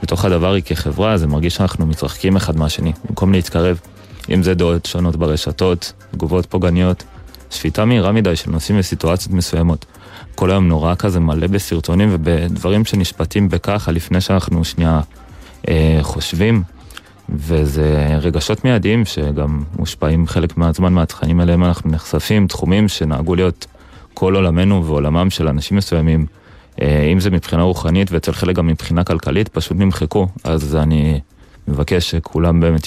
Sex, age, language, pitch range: male, 30-49, Hebrew, 75-90 Hz